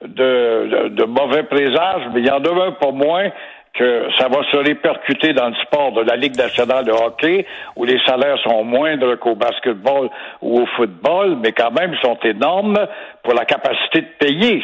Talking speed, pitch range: 195 wpm, 135-200 Hz